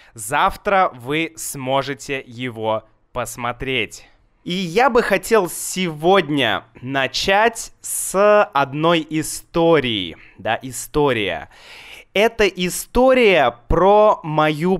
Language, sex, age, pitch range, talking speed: Russian, male, 20-39, 130-175 Hz, 80 wpm